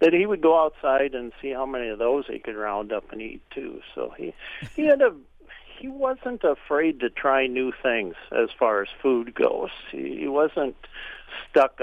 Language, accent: English, American